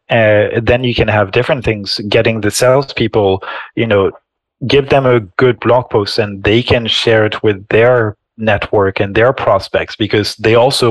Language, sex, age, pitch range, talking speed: English, male, 20-39, 105-120 Hz, 180 wpm